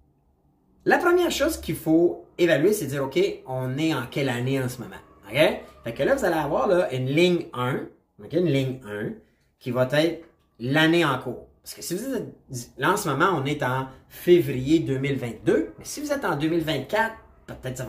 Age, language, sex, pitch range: 30-49, French, male, 125-165 Hz